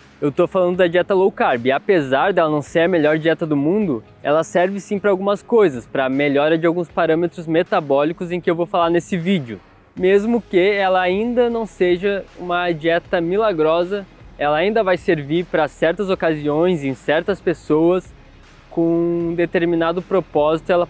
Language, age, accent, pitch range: Portuguese, 20-39, Brazilian, 150-185 Hz